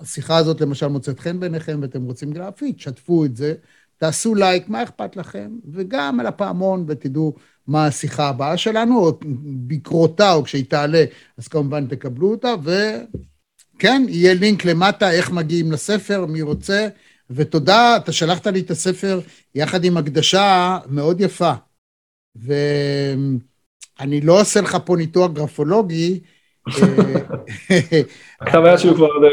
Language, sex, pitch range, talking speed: Hebrew, male, 145-180 Hz, 130 wpm